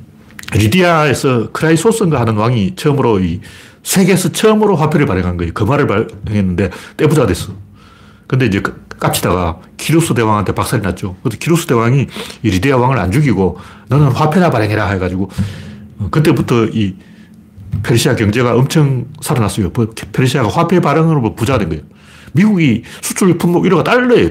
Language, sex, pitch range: Korean, male, 105-170 Hz